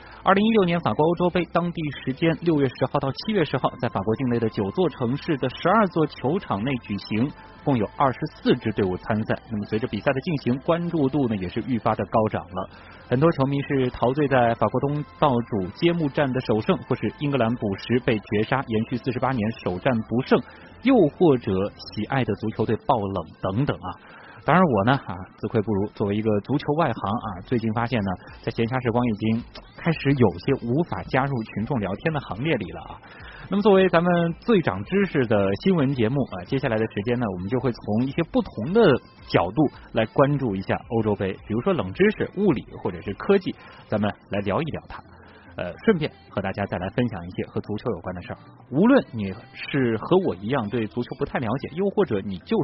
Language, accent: Chinese, native